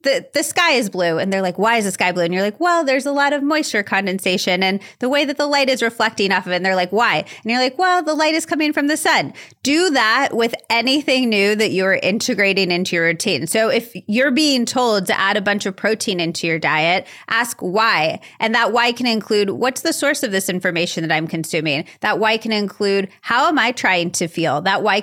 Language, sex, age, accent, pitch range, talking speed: English, female, 30-49, American, 180-235 Hz, 245 wpm